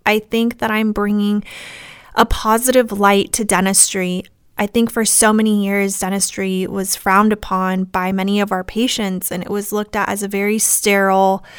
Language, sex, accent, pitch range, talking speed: English, female, American, 195-225 Hz, 175 wpm